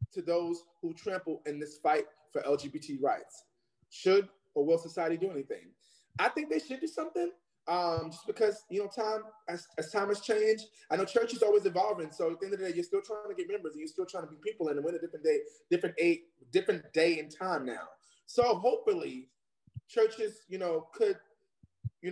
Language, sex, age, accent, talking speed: English, male, 30-49, American, 210 wpm